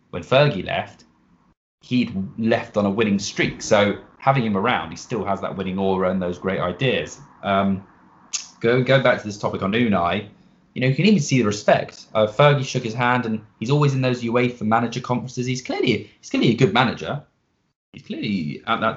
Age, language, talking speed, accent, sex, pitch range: 20-39, English, 205 wpm, British, male, 100-125 Hz